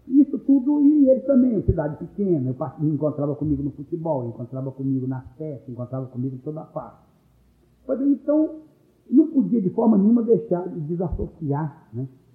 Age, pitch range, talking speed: 60-79, 130-175 Hz, 180 wpm